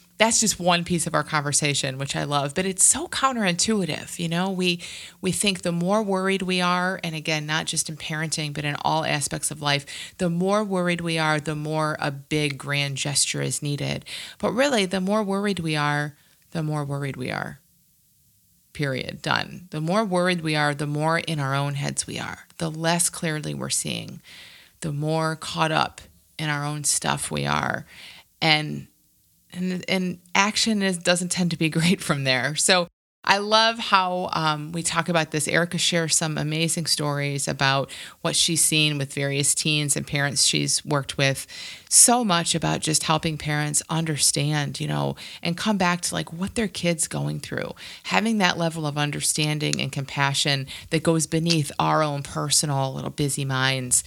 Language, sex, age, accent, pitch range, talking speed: English, female, 30-49, American, 145-180 Hz, 180 wpm